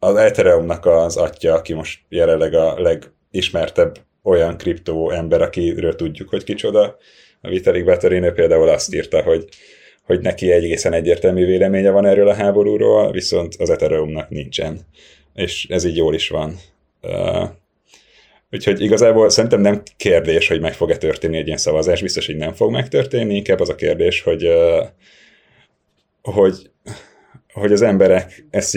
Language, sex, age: Hungarian, male, 30-49